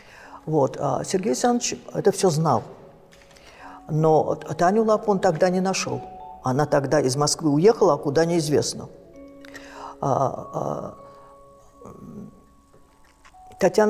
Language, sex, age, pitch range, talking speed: Russian, female, 50-69, 145-195 Hz, 90 wpm